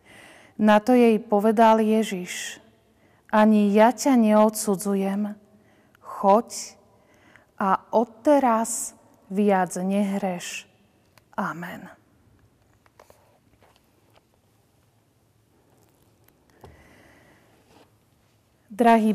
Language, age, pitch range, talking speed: Slovak, 40-59, 195-230 Hz, 50 wpm